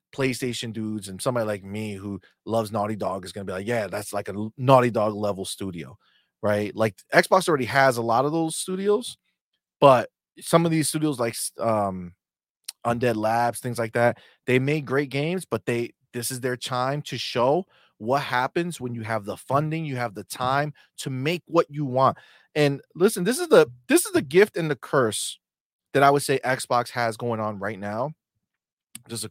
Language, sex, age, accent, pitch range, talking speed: English, male, 30-49, American, 115-155 Hz, 195 wpm